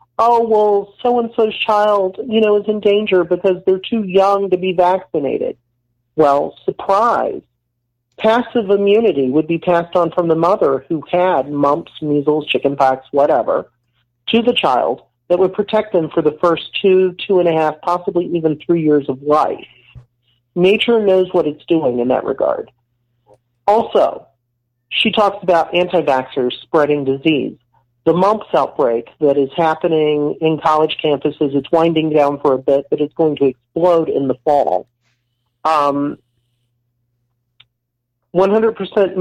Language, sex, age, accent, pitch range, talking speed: English, male, 40-59, American, 130-190 Hz, 145 wpm